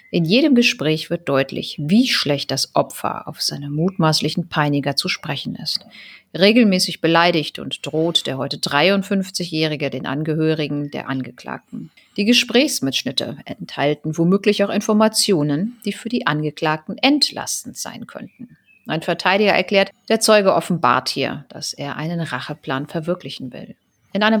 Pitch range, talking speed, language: 145-200 Hz, 135 wpm, German